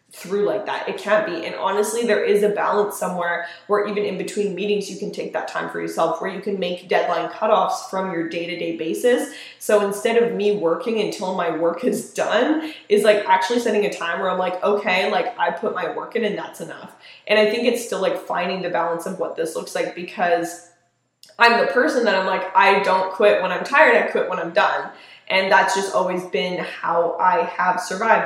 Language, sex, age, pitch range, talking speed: English, female, 10-29, 175-215 Hz, 225 wpm